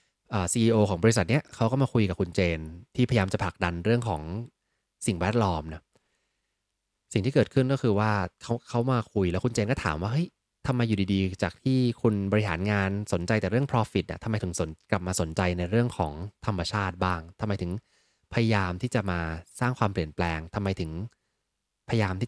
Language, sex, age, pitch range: English, male, 20-39, 90-115 Hz